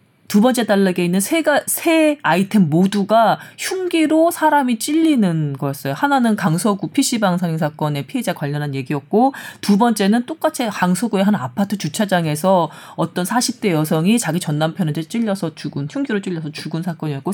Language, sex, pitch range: Korean, female, 170-255 Hz